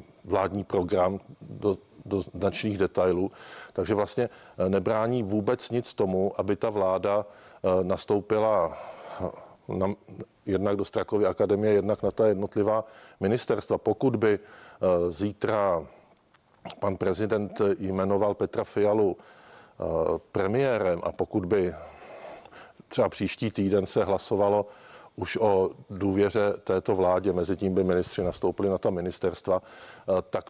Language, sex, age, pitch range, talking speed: Czech, male, 50-69, 95-110 Hz, 110 wpm